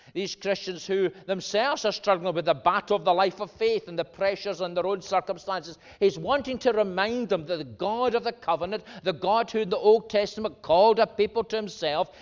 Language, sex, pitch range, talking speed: English, male, 180-220 Hz, 215 wpm